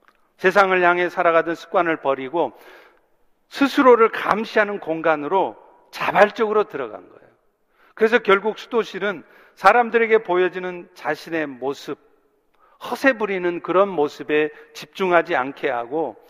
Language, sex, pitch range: Korean, male, 170-230 Hz